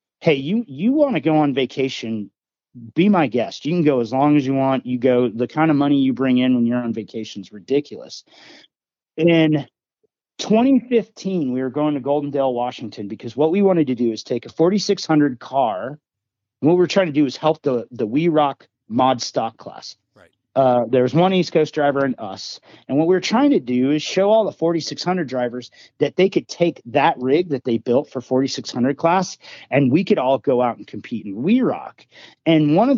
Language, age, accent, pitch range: English, 40-59, American, 120-150 Hz